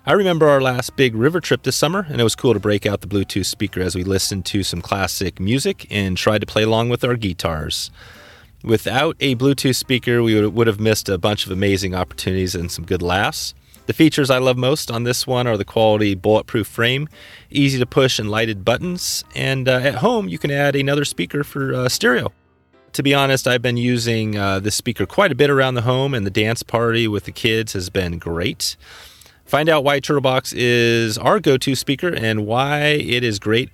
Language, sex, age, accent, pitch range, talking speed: English, male, 30-49, American, 105-140 Hz, 210 wpm